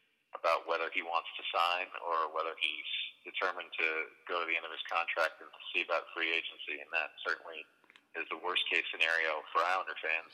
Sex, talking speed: male, 190 wpm